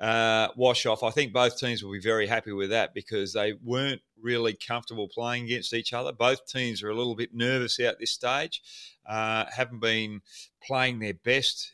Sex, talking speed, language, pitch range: male, 195 wpm, English, 105-125 Hz